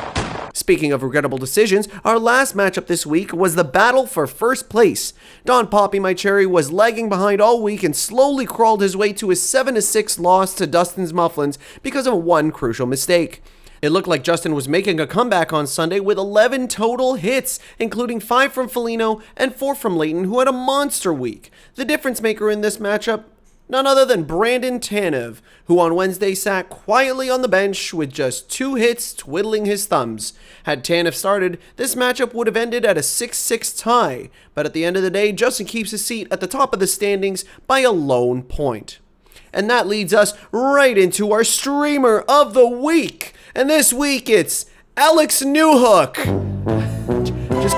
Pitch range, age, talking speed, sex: 175-245 Hz, 30-49, 185 wpm, male